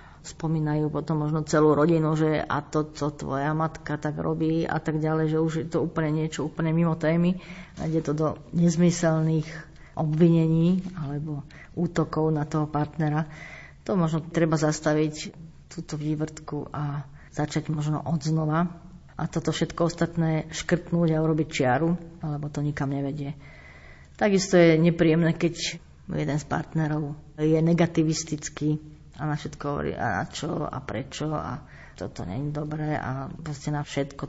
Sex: female